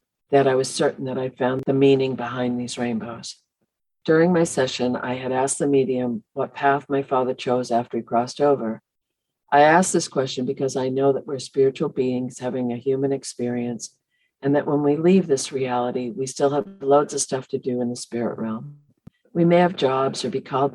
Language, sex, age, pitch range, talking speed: English, female, 50-69, 125-145 Hz, 200 wpm